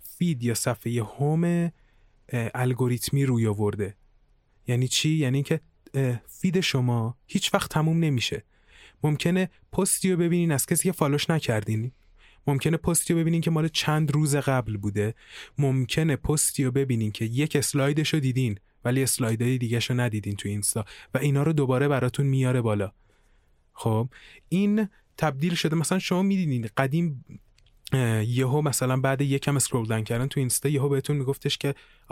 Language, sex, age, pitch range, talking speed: Persian, male, 30-49, 115-155 Hz, 150 wpm